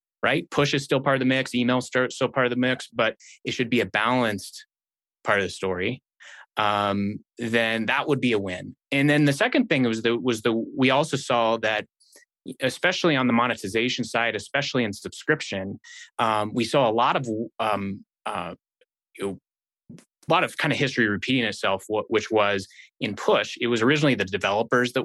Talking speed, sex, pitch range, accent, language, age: 195 wpm, male, 105-130 Hz, American, English, 20-39